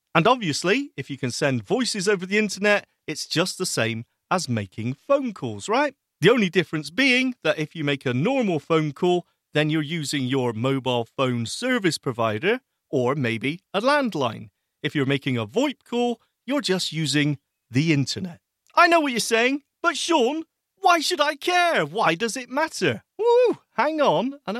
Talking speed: 180 wpm